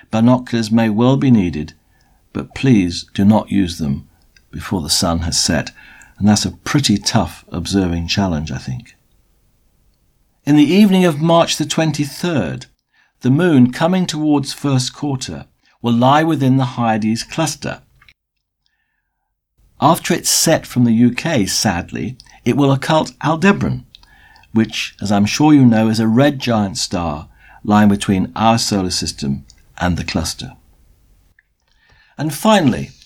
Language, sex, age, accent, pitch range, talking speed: English, male, 60-79, British, 100-135 Hz, 135 wpm